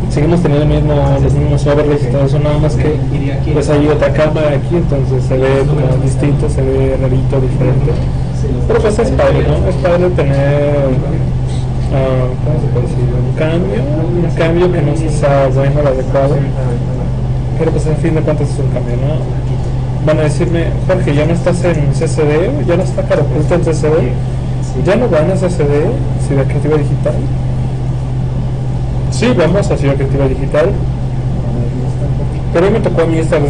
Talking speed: 180 wpm